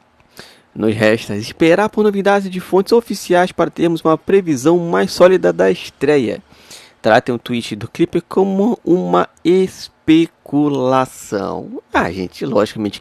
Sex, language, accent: male, Portuguese, Brazilian